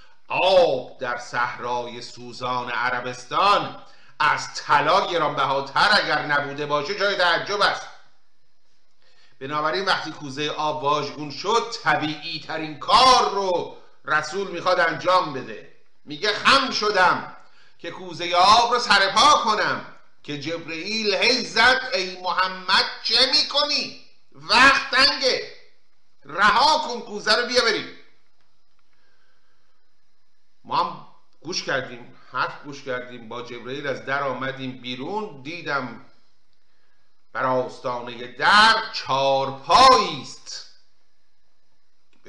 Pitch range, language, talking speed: 135-220 Hz, Persian, 100 wpm